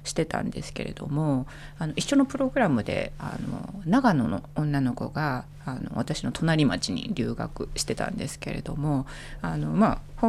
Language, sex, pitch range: Japanese, female, 135-170 Hz